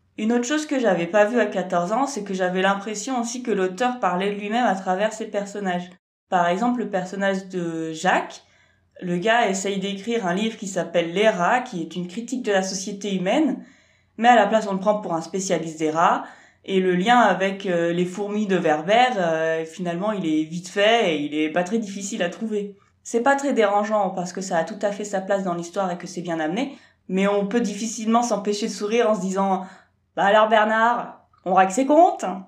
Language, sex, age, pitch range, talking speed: French, female, 20-39, 180-230 Hz, 220 wpm